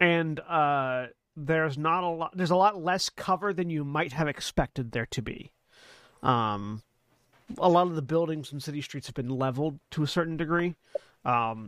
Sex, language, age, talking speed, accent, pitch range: male, English, 30-49, 185 wpm, American, 130-170 Hz